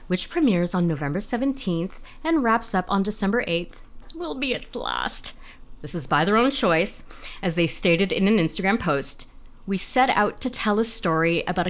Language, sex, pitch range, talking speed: English, female, 170-240 Hz, 185 wpm